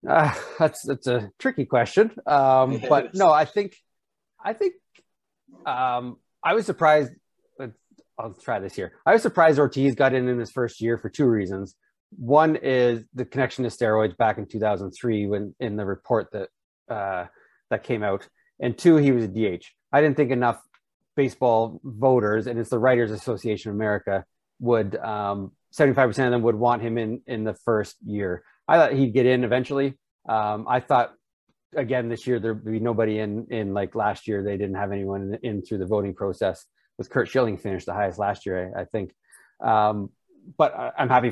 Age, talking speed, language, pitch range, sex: 30-49, 185 wpm, English, 110-135 Hz, male